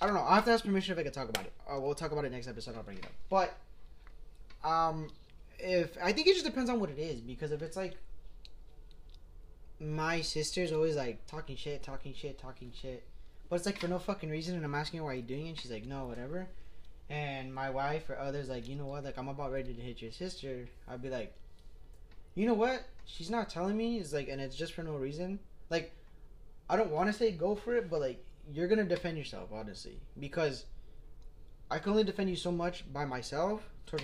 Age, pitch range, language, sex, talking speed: 20-39, 125-170 Hz, English, male, 235 wpm